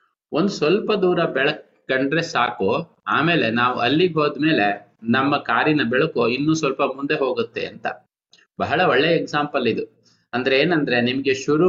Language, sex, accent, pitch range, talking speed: Kannada, male, native, 120-160 Hz, 135 wpm